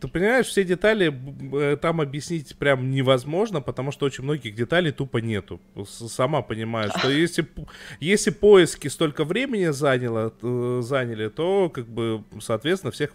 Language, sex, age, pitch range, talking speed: Russian, male, 20-39, 110-145 Hz, 130 wpm